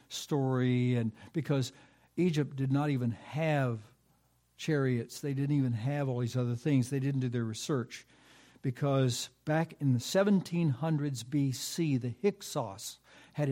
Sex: male